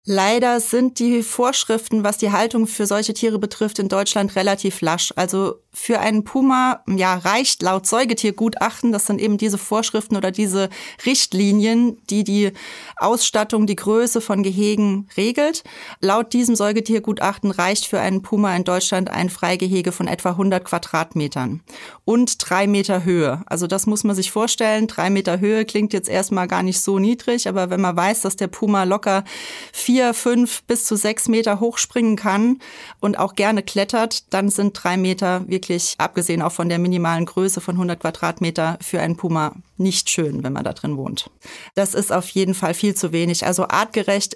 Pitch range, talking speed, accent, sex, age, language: 185-220 Hz, 170 wpm, German, female, 30-49, German